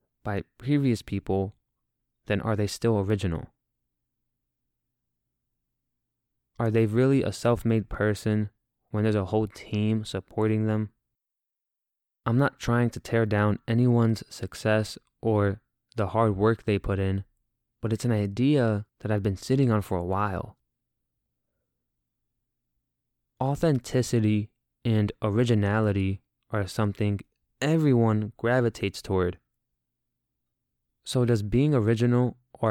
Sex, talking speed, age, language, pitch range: male, 110 wpm, 20-39, English, 100-120 Hz